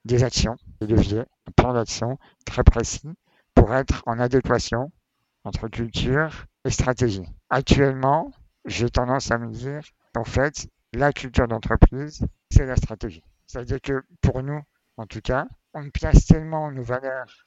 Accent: French